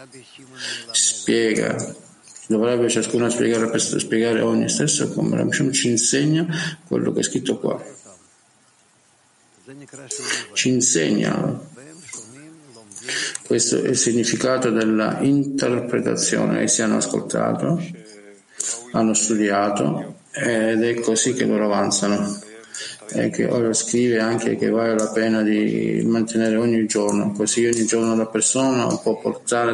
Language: Italian